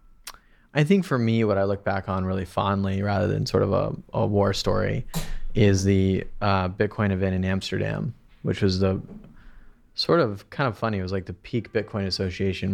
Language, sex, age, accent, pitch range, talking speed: English, male, 20-39, American, 95-110 Hz, 195 wpm